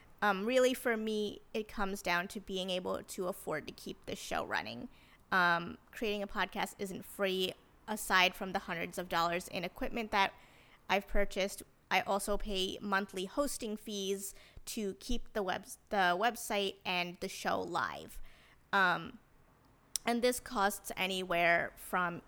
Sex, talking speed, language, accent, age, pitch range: female, 150 wpm, English, American, 20-39, 185-215 Hz